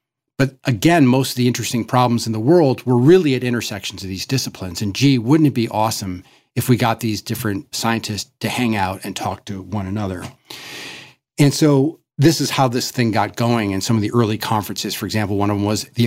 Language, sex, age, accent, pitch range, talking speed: English, male, 40-59, American, 105-130 Hz, 220 wpm